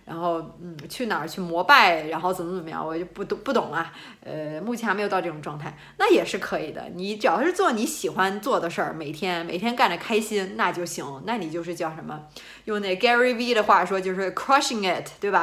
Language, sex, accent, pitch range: Chinese, female, native, 170-225 Hz